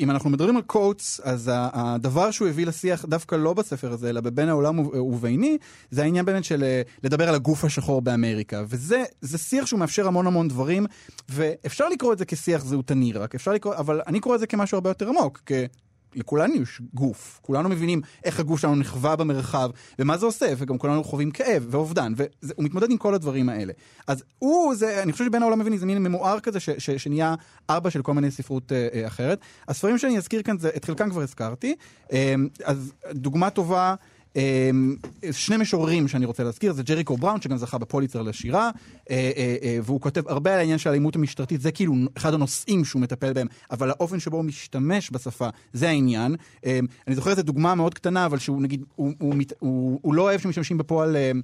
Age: 30-49